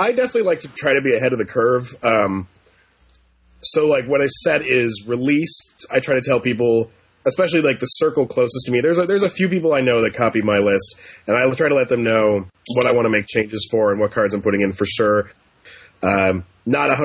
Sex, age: male, 30-49